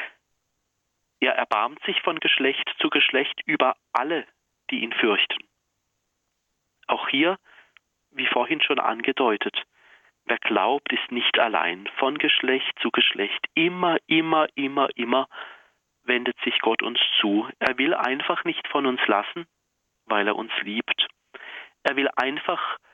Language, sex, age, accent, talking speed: German, male, 40-59, German, 130 wpm